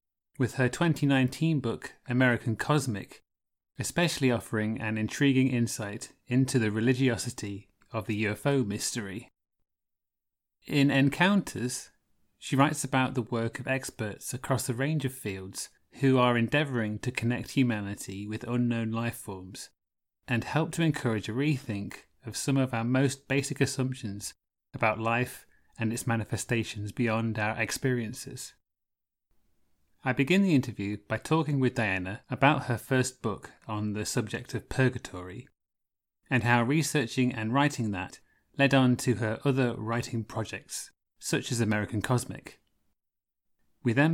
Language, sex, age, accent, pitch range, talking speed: English, male, 30-49, British, 105-130 Hz, 135 wpm